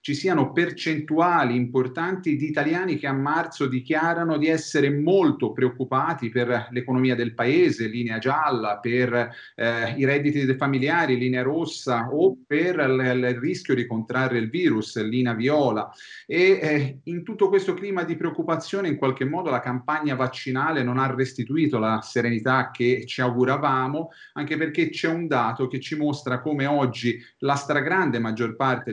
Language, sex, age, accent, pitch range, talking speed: Italian, male, 40-59, native, 125-160 Hz, 155 wpm